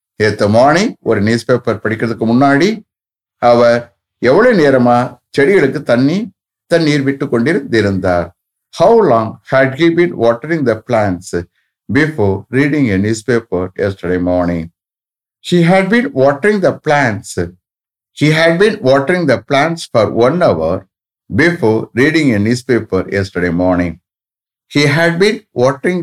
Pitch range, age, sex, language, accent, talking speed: 95-145 Hz, 60-79, male, English, Indian, 100 wpm